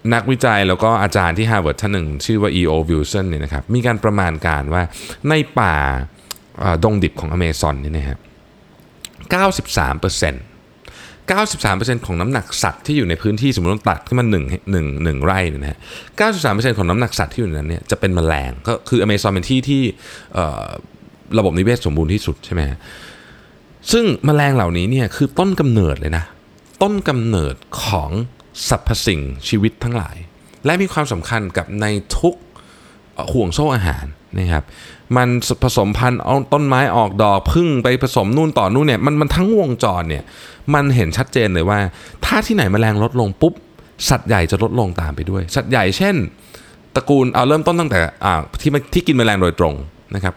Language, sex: Thai, male